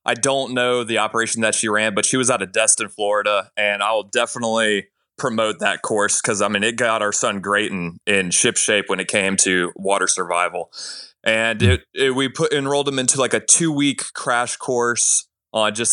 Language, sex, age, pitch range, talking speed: English, male, 20-39, 100-125 Hz, 205 wpm